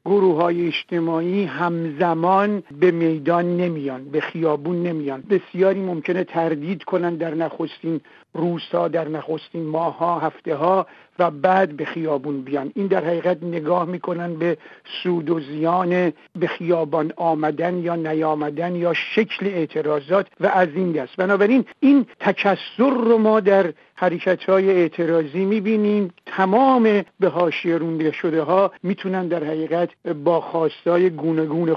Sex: male